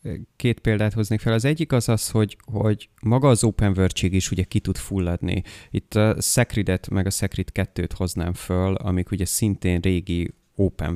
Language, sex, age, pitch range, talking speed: Hungarian, male, 30-49, 90-115 Hz, 180 wpm